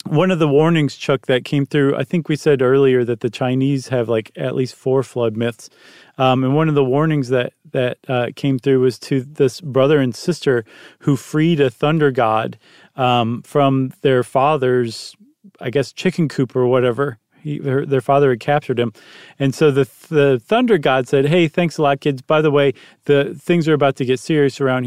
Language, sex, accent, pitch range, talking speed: English, male, American, 130-155 Hz, 205 wpm